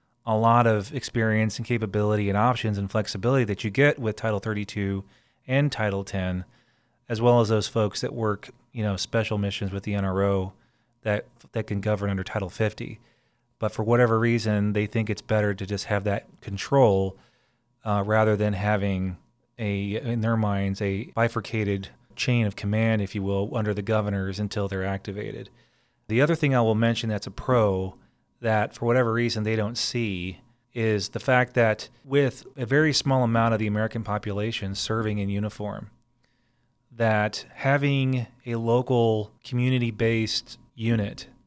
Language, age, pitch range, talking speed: English, 30-49, 105-120 Hz, 165 wpm